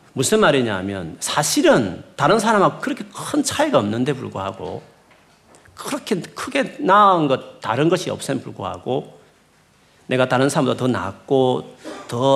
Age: 40-59